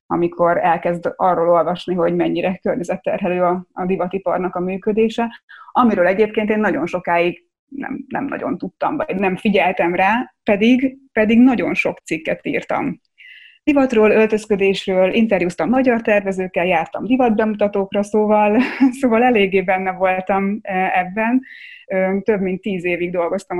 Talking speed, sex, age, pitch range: 125 wpm, female, 20-39, 180-220 Hz